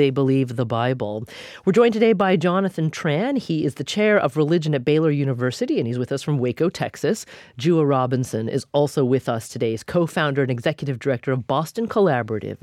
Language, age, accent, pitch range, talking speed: English, 40-59, American, 125-155 Hz, 195 wpm